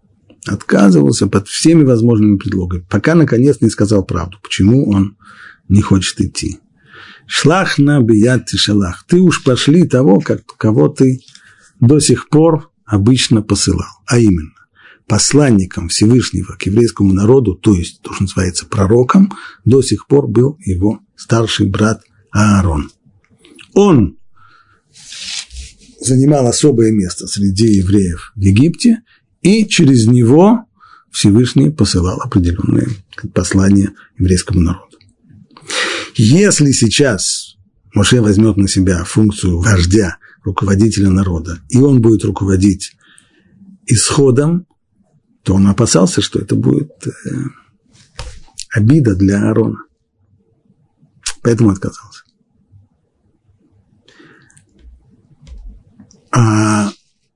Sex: male